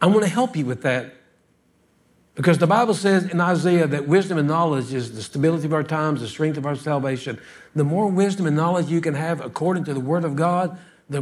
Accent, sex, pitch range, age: American, male, 145-230 Hz, 60-79